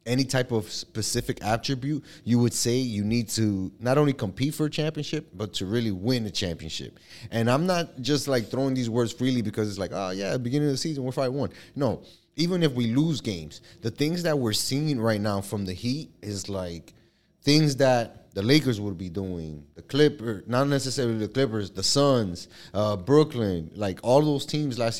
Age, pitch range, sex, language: 20-39, 100-130 Hz, male, English